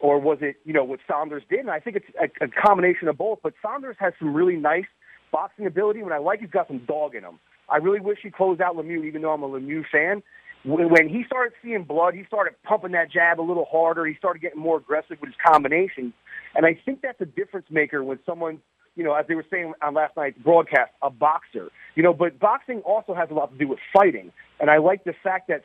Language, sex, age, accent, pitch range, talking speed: English, male, 40-59, American, 150-185 Hz, 255 wpm